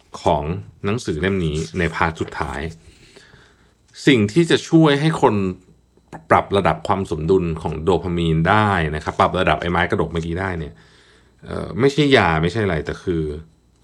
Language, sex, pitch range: Thai, male, 80-105 Hz